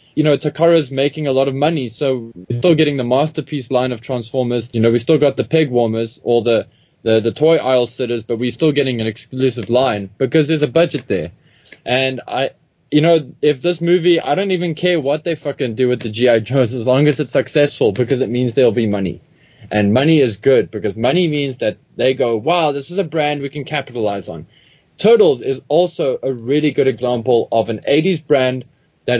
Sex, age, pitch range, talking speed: male, 20-39, 120-155 Hz, 220 wpm